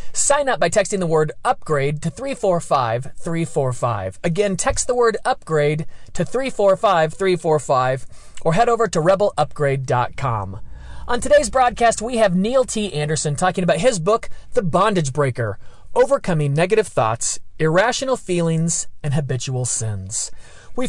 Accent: American